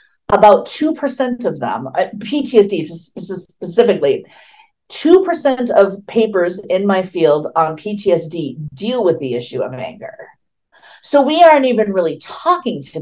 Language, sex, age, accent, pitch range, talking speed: English, female, 50-69, American, 165-245 Hz, 125 wpm